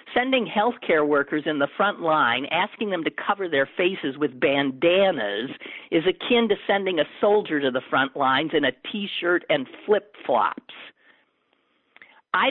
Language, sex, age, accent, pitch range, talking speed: English, male, 50-69, American, 145-195 Hz, 150 wpm